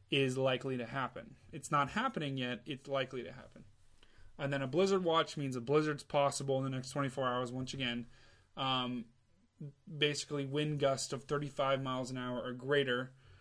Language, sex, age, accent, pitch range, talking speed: English, male, 20-39, American, 125-150 Hz, 175 wpm